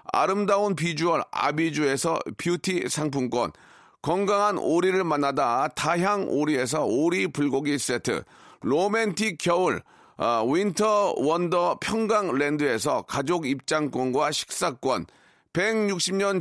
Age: 40-59